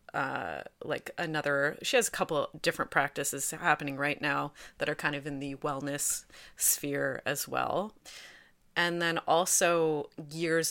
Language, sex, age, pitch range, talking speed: English, female, 30-49, 145-175 Hz, 145 wpm